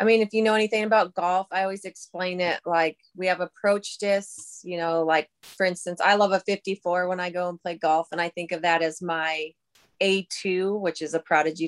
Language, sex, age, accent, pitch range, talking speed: English, female, 20-39, American, 165-195 Hz, 225 wpm